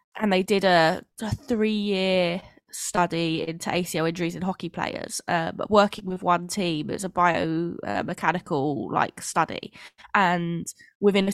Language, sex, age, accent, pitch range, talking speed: English, female, 10-29, British, 165-195 Hz, 160 wpm